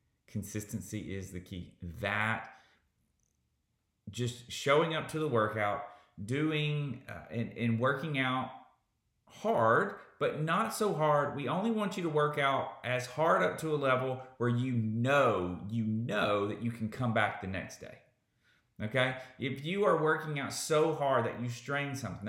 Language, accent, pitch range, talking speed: English, American, 100-130 Hz, 160 wpm